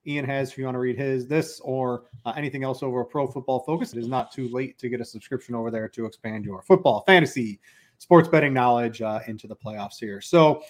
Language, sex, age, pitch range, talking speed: English, male, 30-49, 130-165 Hz, 240 wpm